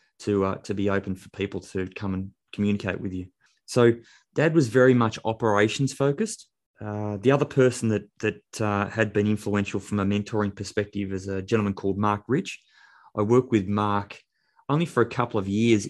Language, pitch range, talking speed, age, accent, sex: English, 100-120 Hz, 190 wpm, 20-39, Australian, male